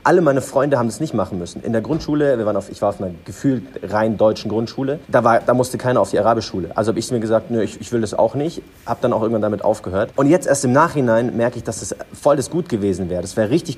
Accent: German